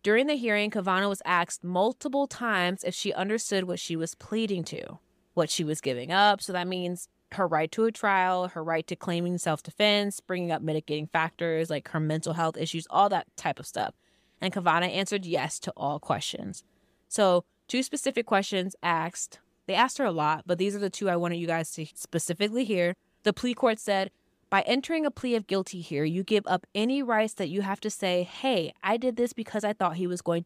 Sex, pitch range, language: female, 165-200 Hz, English